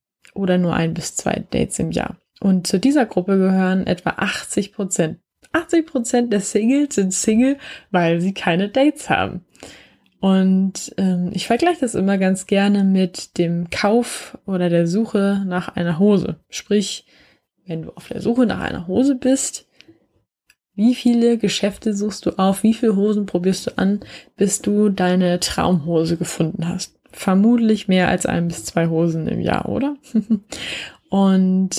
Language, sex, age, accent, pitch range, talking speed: German, female, 10-29, German, 180-220 Hz, 155 wpm